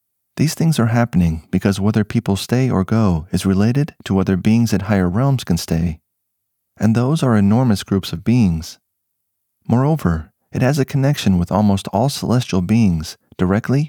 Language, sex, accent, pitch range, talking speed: English, male, American, 90-125 Hz, 165 wpm